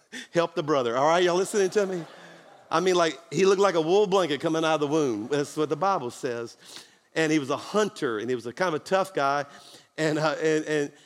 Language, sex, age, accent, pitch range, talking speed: English, male, 50-69, American, 155-210 Hz, 250 wpm